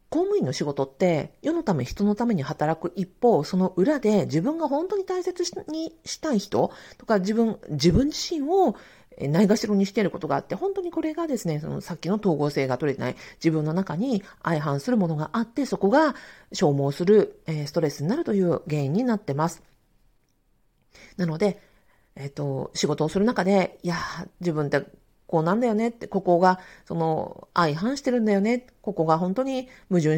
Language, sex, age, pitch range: Japanese, female, 40-59, 170-265 Hz